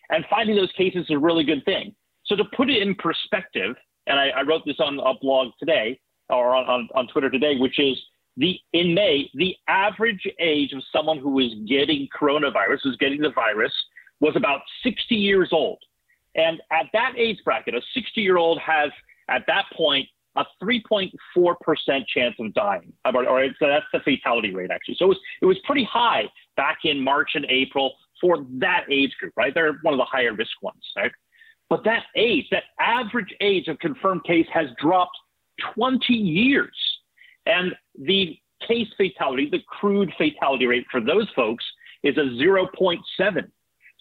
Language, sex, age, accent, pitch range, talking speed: English, male, 40-59, American, 145-215 Hz, 175 wpm